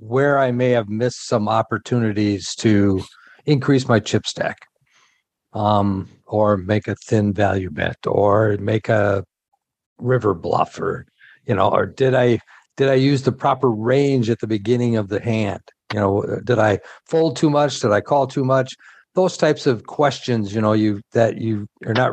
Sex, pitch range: male, 105-135 Hz